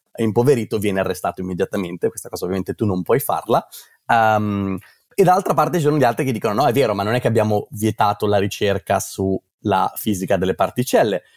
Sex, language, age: male, Italian, 30-49